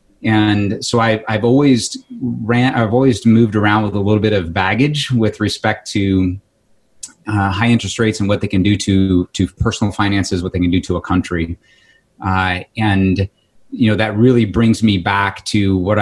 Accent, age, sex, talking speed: American, 30-49, male, 185 wpm